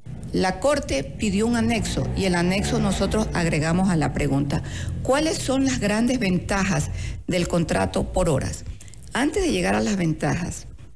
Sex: female